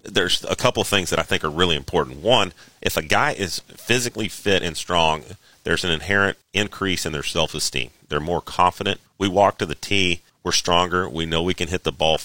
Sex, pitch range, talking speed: male, 80-95 Hz, 215 wpm